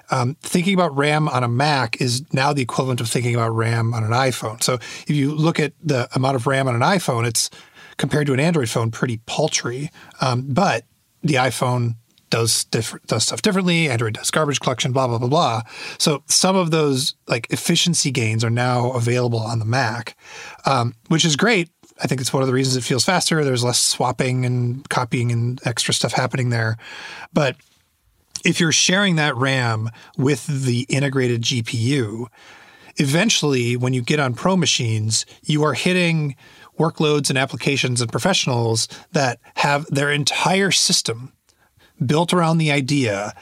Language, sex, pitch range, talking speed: English, male, 120-155 Hz, 175 wpm